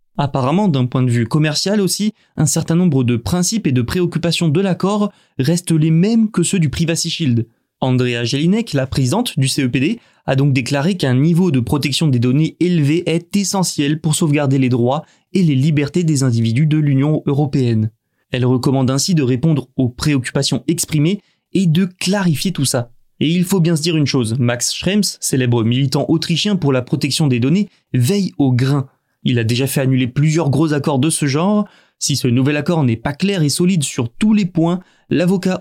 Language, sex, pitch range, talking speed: French, male, 130-170 Hz, 190 wpm